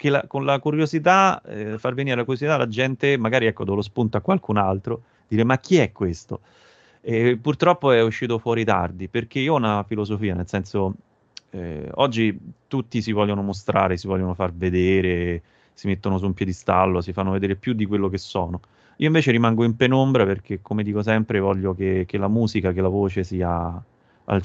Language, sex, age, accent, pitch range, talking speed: Italian, male, 30-49, native, 95-115 Hz, 195 wpm